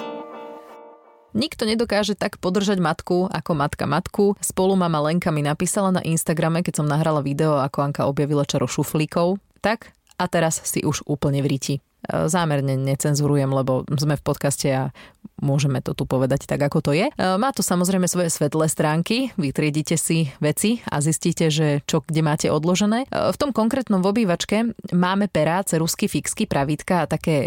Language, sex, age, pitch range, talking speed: Slovak, female, 30-49, 150-180 Hz, 160 wpm